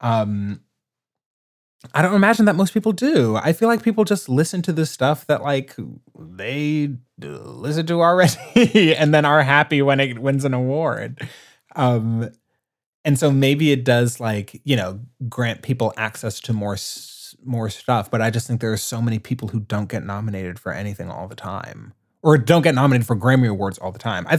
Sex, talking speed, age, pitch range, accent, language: male, 195 wpm, 20-39, 105-140 Hz, American, English